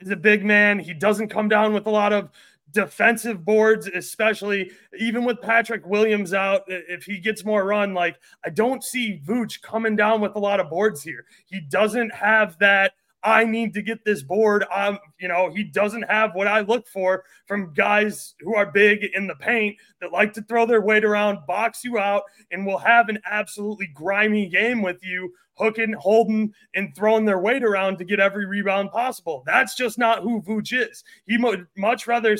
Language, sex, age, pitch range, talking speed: English, male, 20-39, 190-225 Hz, 200 wpm